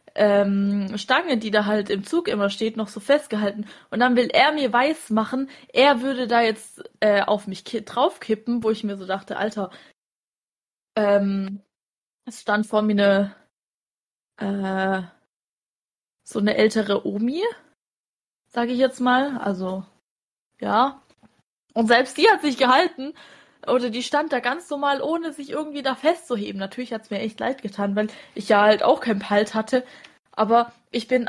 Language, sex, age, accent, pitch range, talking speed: German, female, 20-39, German, 205-255 Hz, 165 wpm